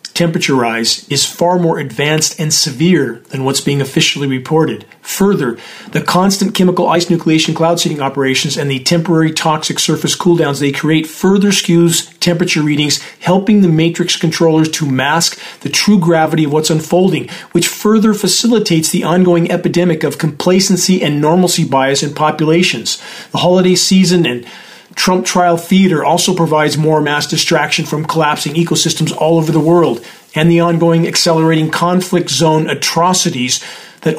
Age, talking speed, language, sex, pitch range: 40-59, 150 wpm, English, male, 150-175 Hz